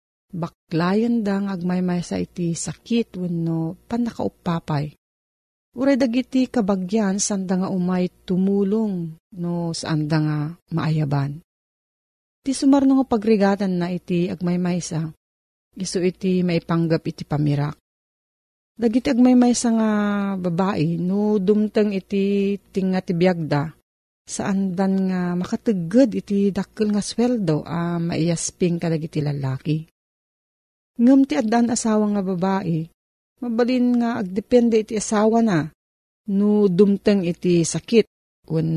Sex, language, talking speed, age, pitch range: female, Filipino, 110 wpm, 40-59, 165-215 Hz